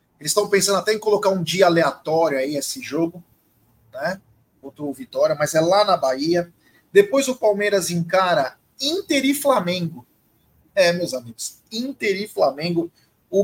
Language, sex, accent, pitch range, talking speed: Portuguese, male, Brazilian, 170-245 Hz, 150 wpm